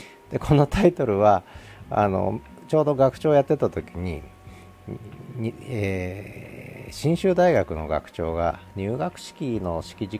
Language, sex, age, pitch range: Japanese, male, 40-59, 90-130 Hz